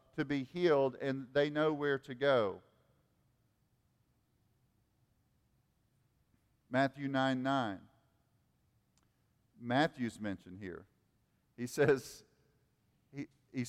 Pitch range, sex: 125-200 Hz, male